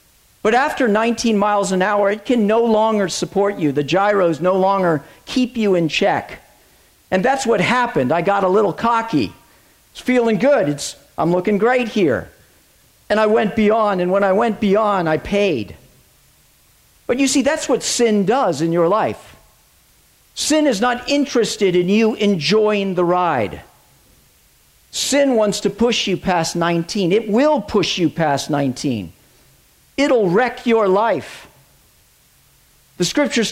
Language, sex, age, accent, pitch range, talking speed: English, male, 50-69, American, 180-235 Hz, 155 wpm